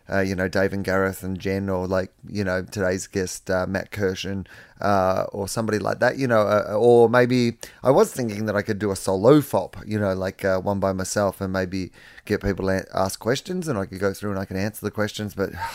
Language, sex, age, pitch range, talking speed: English, male, 30-49, 95-120 Hz, 240 wpm